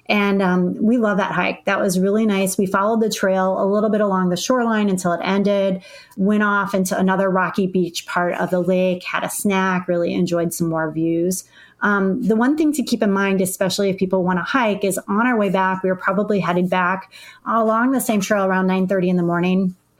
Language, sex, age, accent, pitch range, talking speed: English, female, 30-49, American, 180-205 Hz, 220 wpm